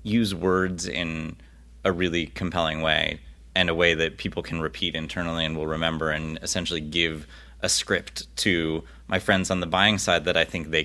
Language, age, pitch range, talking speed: English, 30-49, 85-115 Hz, 190 wpm